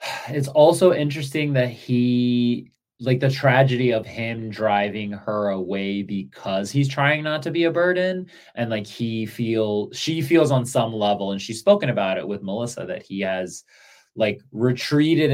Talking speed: 165 wpm